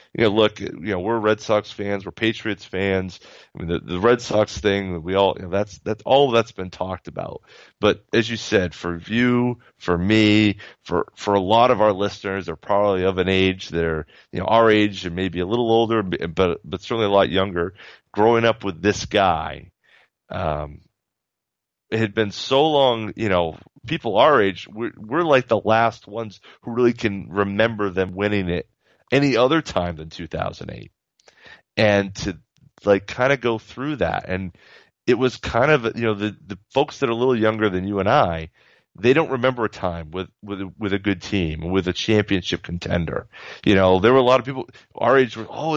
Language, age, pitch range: English, 30-49, 95-120 Hz